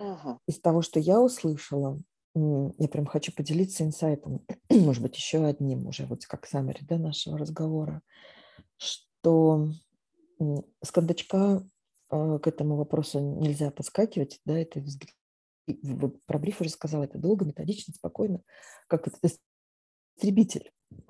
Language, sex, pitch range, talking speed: Russian, female, 140-170 Hz, 115 wpm